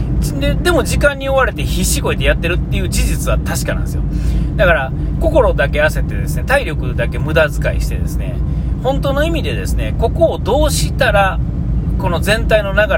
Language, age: Japanese, 40-59